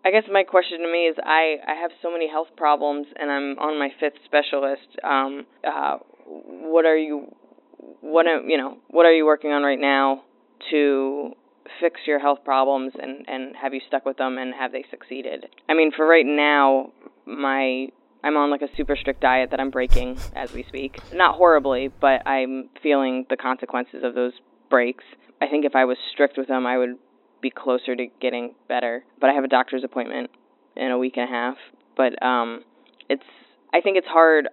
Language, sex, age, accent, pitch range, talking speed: English, female, 20-39, American, 130-155 Hz, 200 wpm